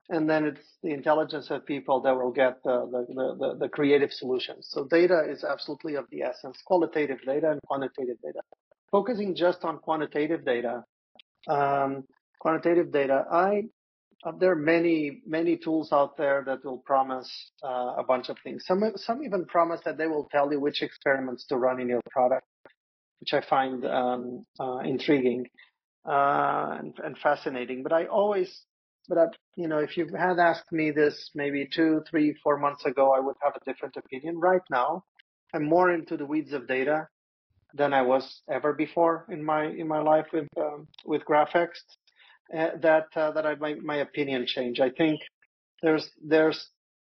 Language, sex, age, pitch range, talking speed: English, male, 30-49, 135-165 Hz, 175 wpm